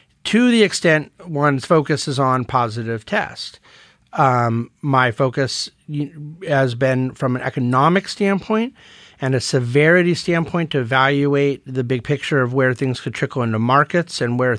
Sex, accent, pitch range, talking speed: male, American, 125-155 Hz, 145 wpm